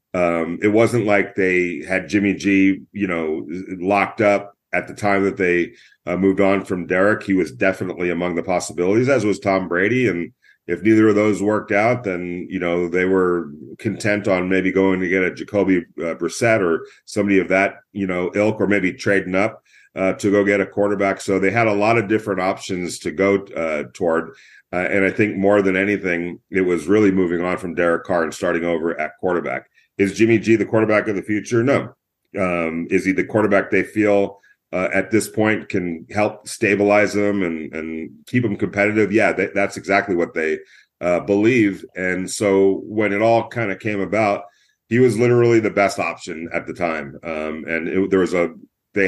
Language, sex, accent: English, male, American